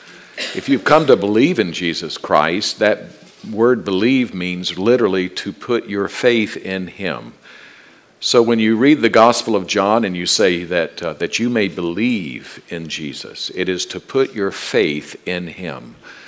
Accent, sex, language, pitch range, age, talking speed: American, male, English, 90-115 Hz, 50-69, 170 wpm